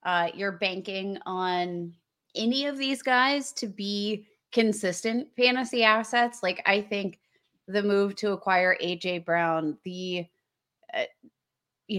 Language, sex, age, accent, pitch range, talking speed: English, female, 20-39, American, 180-230 Hz, 125 wpm